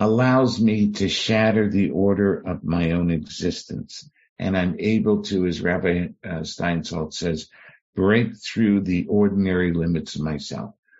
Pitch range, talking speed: 90-105 Hz, 140 wpm